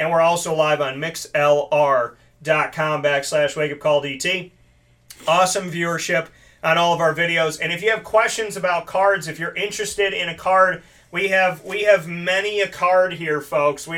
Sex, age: male, 30-49